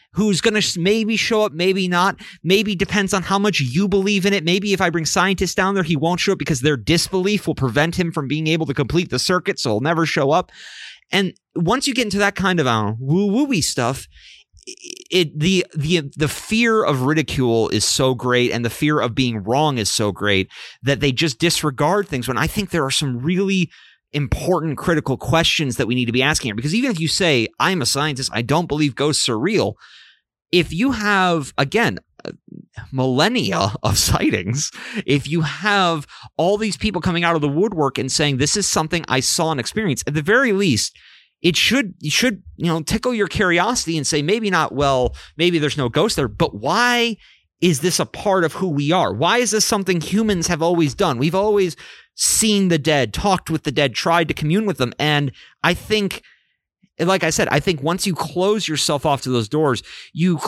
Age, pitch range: 30-49, 140-195 Hz